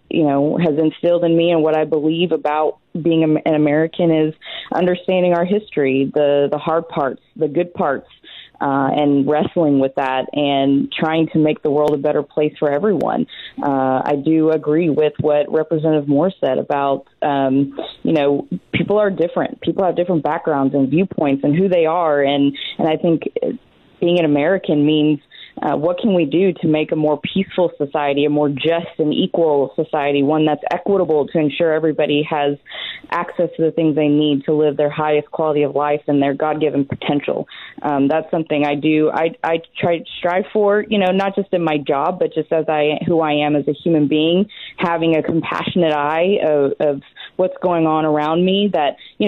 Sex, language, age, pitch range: female, English, 20-39, 145-175 Hz